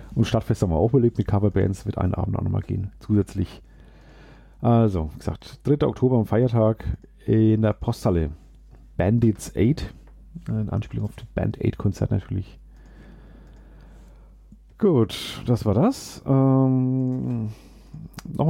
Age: 40-59